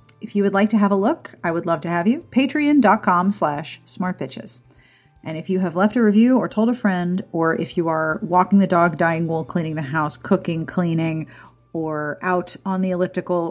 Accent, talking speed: American, 210 wpm